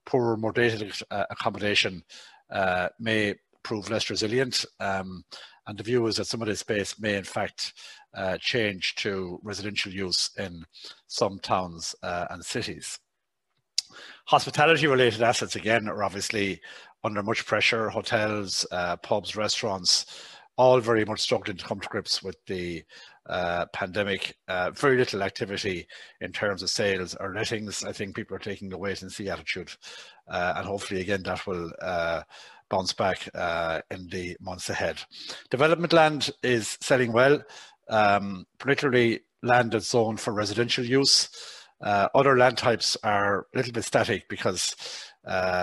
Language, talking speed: English, 155 wpm